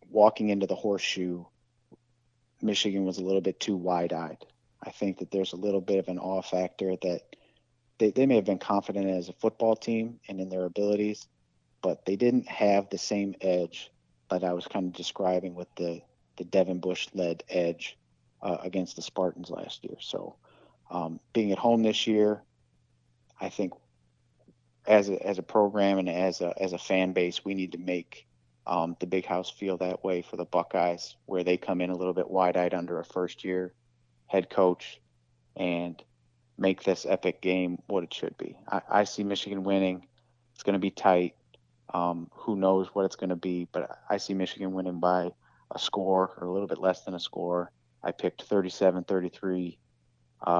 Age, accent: 30-49, American